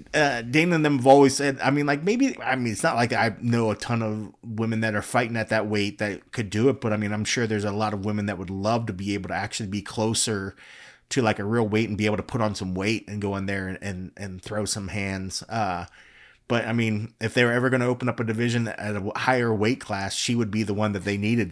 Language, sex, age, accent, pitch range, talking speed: English, male, 30-49, American, 100-120 Hz, 285 wpm